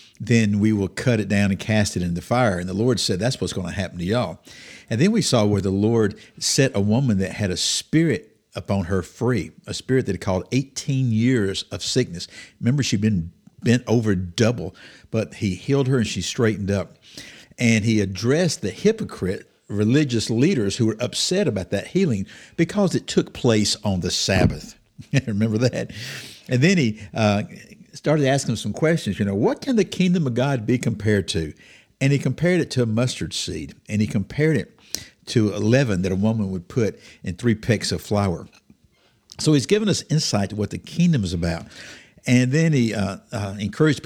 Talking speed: 200 wpm